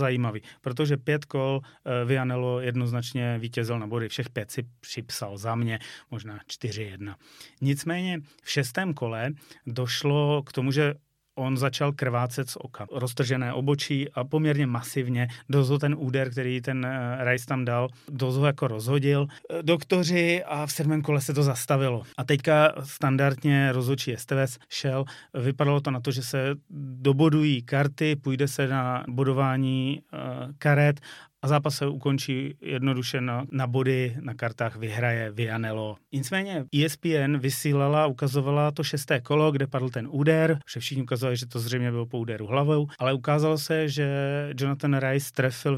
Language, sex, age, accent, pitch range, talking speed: Czech, male, 30-49, native, 125-145 Hz, 150 wpm